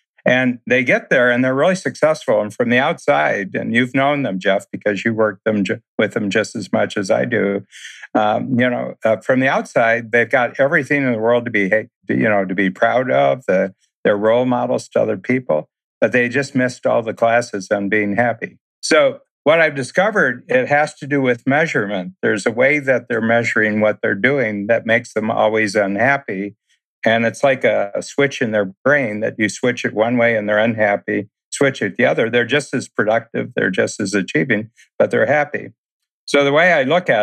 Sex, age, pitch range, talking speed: male, 60-79, 105-125 Hz, 205 wpm